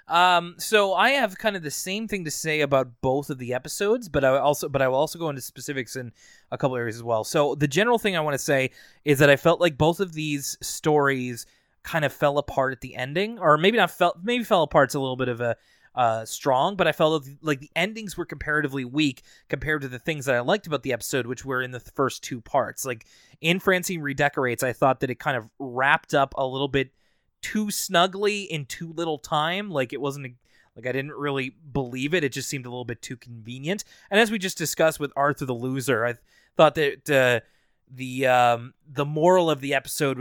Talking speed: 230 wpm